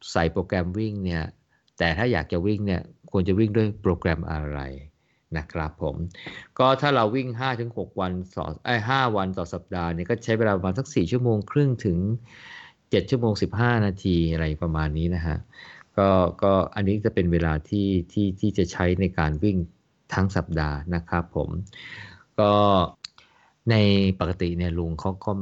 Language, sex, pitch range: Thai, male, 85-105 Hz